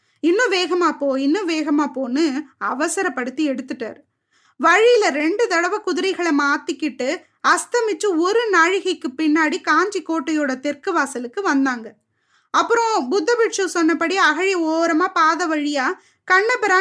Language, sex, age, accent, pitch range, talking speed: Tamil, female, 20-39, native, 285-380 Hz, 95 wpm